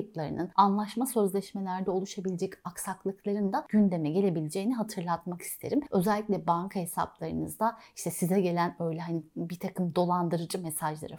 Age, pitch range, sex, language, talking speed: 30-49, 175-230 Hz, female, Turkish, 115 wpm